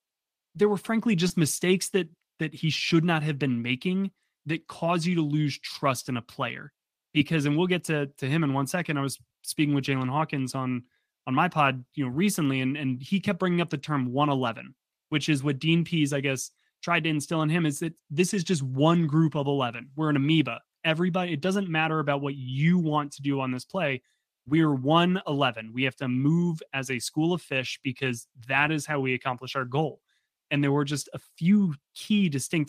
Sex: male